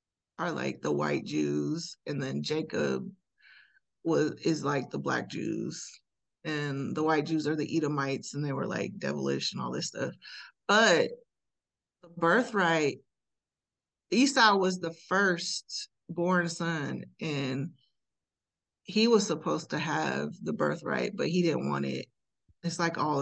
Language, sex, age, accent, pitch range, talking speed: English, female, 20-39, American, 160-245 Hz, 140 wpm